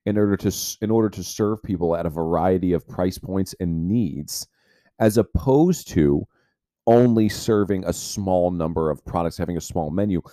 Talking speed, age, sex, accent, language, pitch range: 175 wpm, 40-59, male, American, English, 90-110 Hz